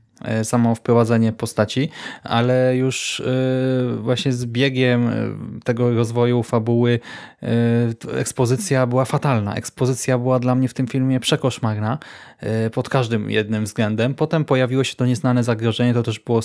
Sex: male